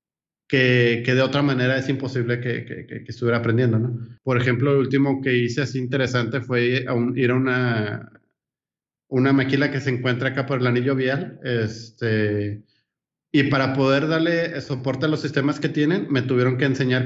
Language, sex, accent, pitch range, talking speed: English, male, Mexican, 120-135 Hz, 190 wpm